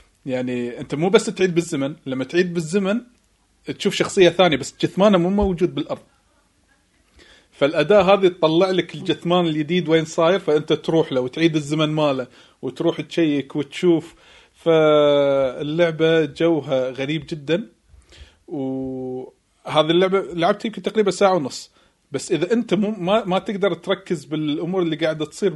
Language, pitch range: Arabic, 140-180 Hz